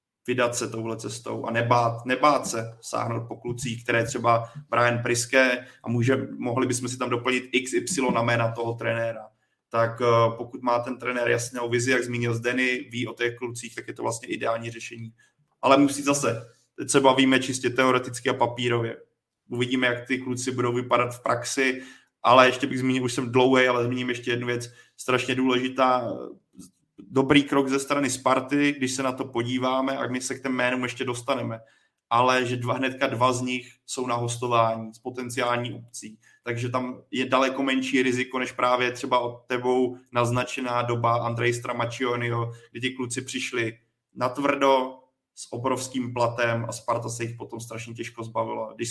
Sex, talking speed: male, 175 wpm